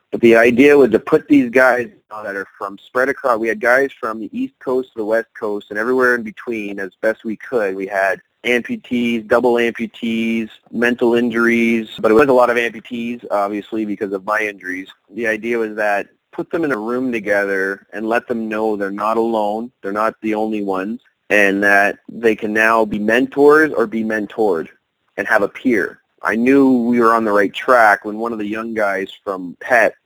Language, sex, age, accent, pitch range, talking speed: English, male, 30-49, American, 100-120 Hz, 205 wpm